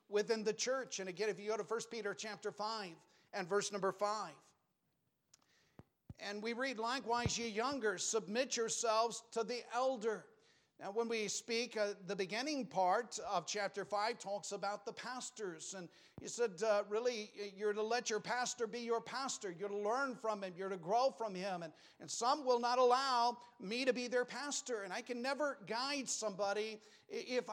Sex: male